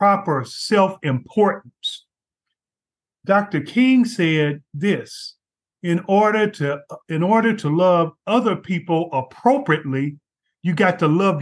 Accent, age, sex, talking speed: American, 50-69, male, 105 wpm